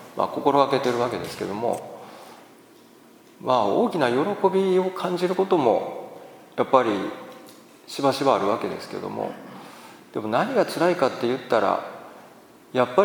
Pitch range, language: 115-160 Hz, Japanese